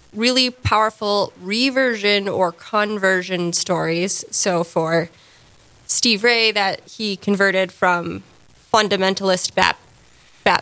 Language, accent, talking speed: English, American, 95 wpm